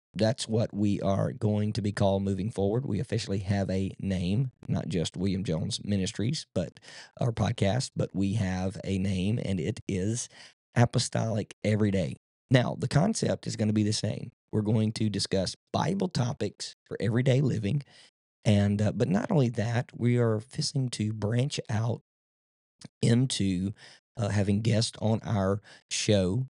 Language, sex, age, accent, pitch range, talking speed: English, male, 40-59, American, 100-120 Hz, 160 wpm